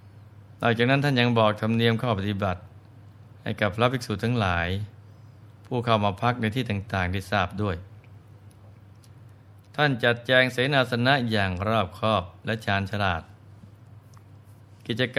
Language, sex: Thai, male